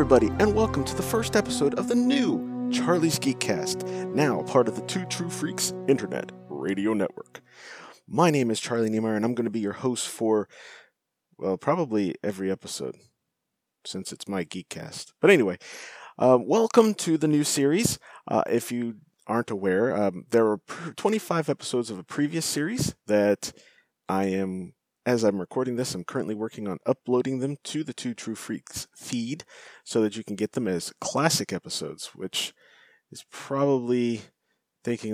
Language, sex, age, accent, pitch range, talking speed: English, male, 30-49, American, 105-140 Hz, 165 wpm